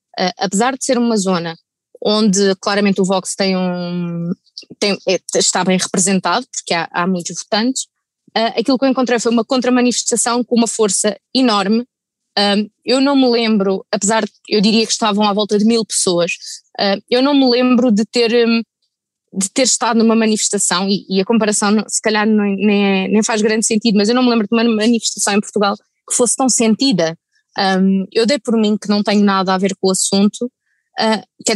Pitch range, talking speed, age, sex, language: 195-230 Hz, 175 wpm, 20-39, female, Portuguese